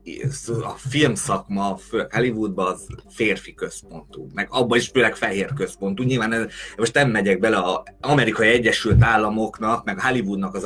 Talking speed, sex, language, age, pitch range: 140 wpm, male, Hungarian, 30-49, 100-135 Hz